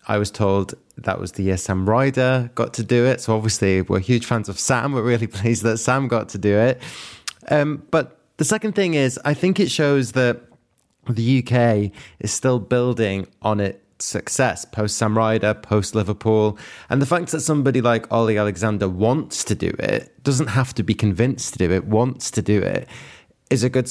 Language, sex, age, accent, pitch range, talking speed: English, male, 20-39, British, 105-130 Hz, 200 wpm